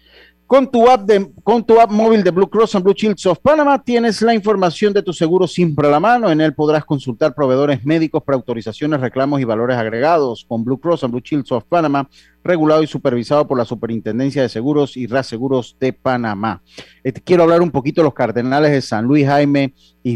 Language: Spanish